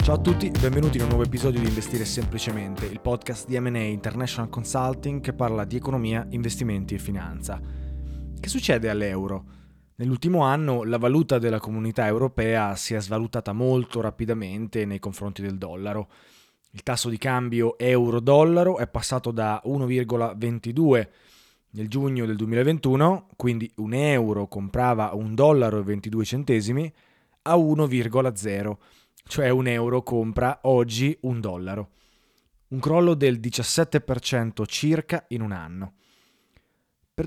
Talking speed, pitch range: 135 wpm, 105-130 Hz